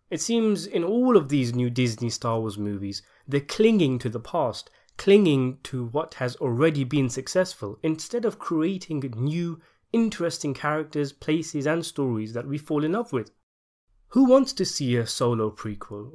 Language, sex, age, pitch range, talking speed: English, male, 30-49, 115-170 Hz, 165 wpm